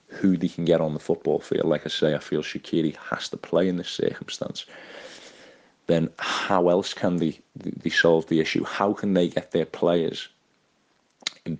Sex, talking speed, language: male, 185 wpm, English